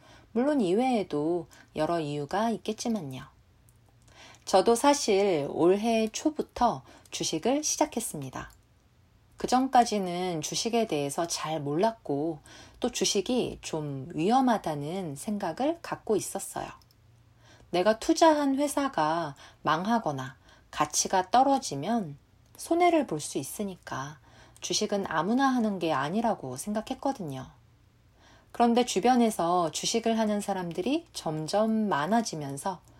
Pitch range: 145-230 Hz